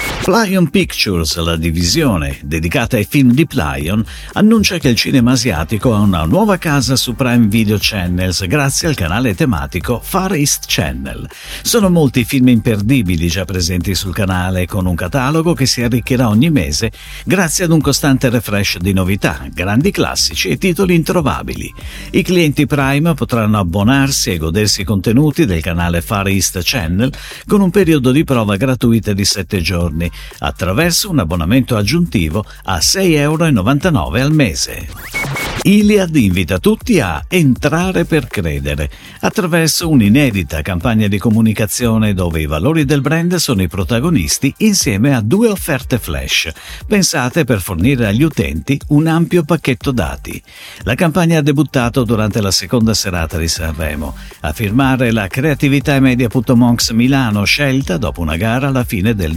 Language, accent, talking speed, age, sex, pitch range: Italian, native, 150 wpm, 50-69, male, 95-150 Hz